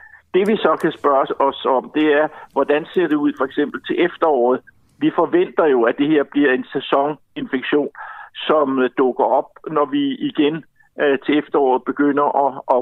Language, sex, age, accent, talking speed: Danish, male, 60-79, native, 170 wpm